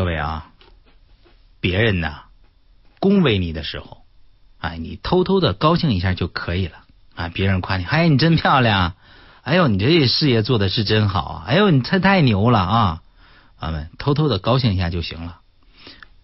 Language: Chinese